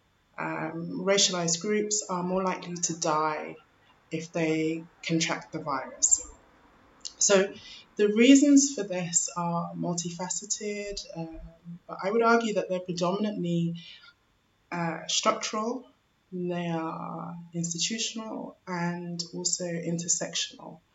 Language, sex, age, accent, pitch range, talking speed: English, female, 20-39, British, 165-195 Hz, 105 wpm